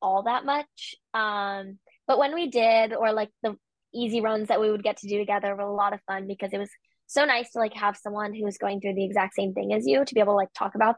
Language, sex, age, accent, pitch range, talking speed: English, female, 10-29, American, 205-240 Hz, 280 wpm